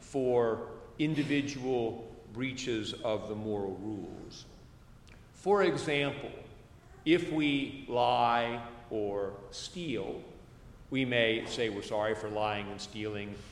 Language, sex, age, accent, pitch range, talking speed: English, male, 50-69, American, 110-145 Hz, 100 wpm